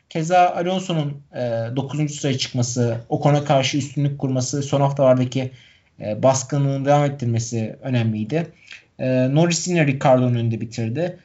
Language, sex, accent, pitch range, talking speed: Turkish, male, native, 130-165 Hz, 125 wpm